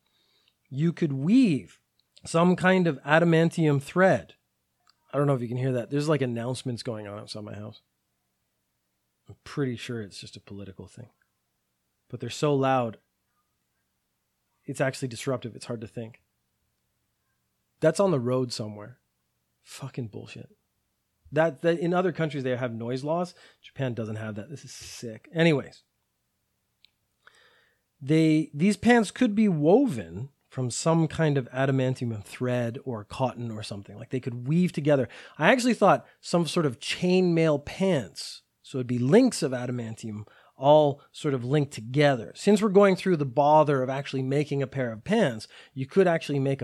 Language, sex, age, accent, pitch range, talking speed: English, male, 30-49, American, 115-155 Hz, 160 wpm